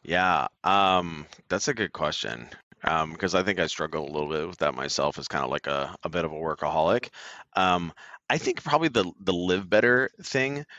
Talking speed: 205 wpm